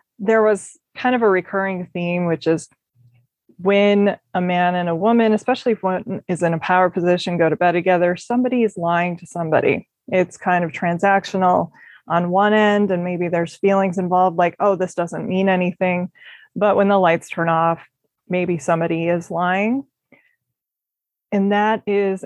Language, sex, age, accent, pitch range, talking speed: English, female, 20-39, American, 175-205 Hz, 170 wpm